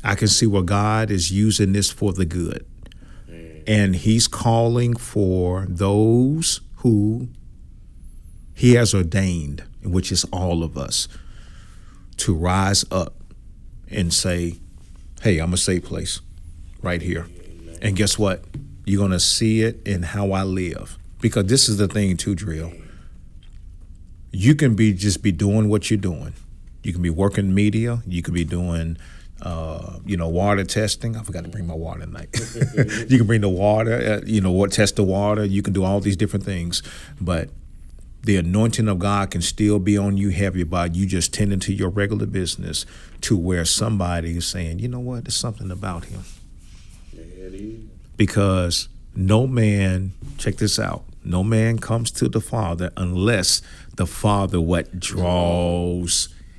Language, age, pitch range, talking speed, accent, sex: English, 50-69, 85-105 Hz, 160 wpm, American, male